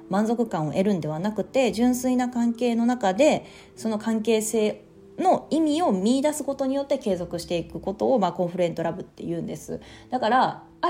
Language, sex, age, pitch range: Japanese, female, 30-49, 170-235 Hz